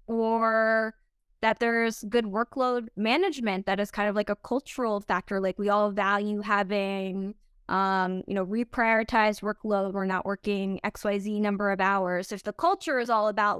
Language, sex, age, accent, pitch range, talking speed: English, female, 10-29, American, 200-235 Hz, 170 wpm